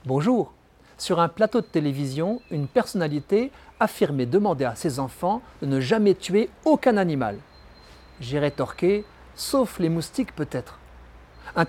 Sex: male